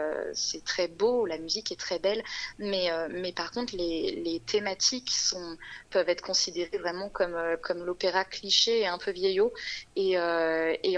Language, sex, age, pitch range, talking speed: French, female, 20-39, 175-235 Hz, 165 wpm